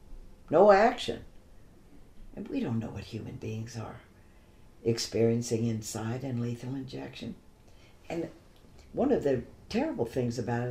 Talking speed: 125 wpm